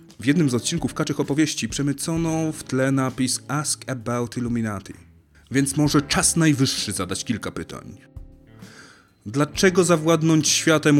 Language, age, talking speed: Polish, 30-49, 125 wpm